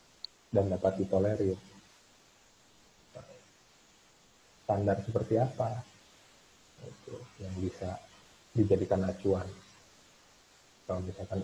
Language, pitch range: Indonesian, 95-105 Hz